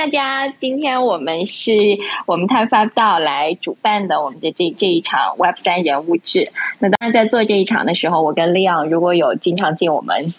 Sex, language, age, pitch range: female, Chinese, 20-39, 165-210 Hz